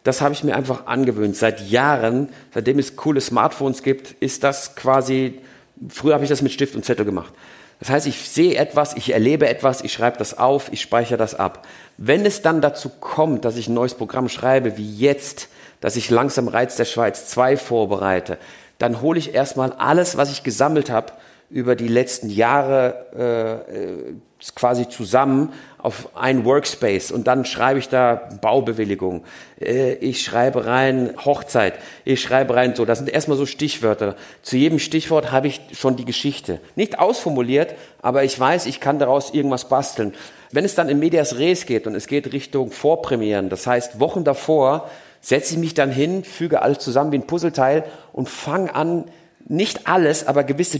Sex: male